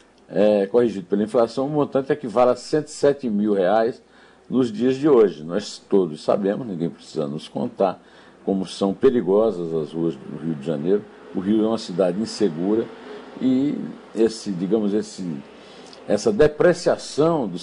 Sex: male